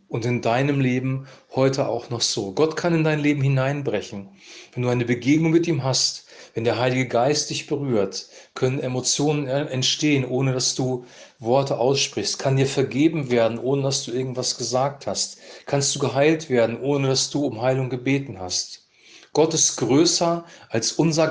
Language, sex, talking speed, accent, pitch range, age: German, male, 170 wpm, German, 120-145 Hz, 40-59